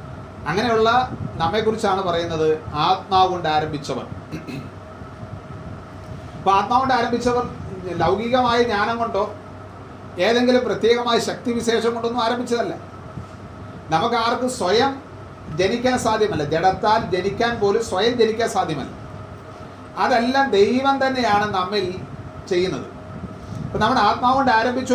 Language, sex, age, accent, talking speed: Malayalam, male, 40-59, native, 90 wpm